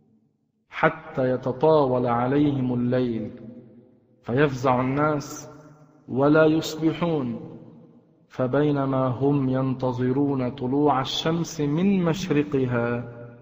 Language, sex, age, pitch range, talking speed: Arabic, male, 40-59, 125-180 Hz, 65 wpm